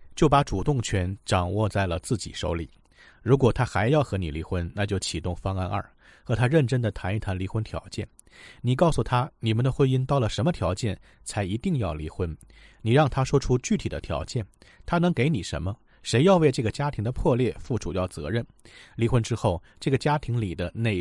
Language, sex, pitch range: Chinese, male, 95-130 Hz